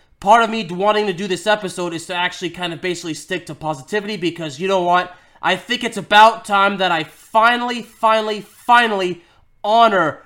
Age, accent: 20-39, American